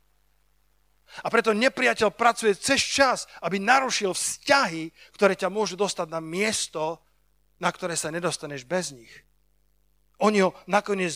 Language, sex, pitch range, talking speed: Slovak, male, 150-215 Hz, 130 wpm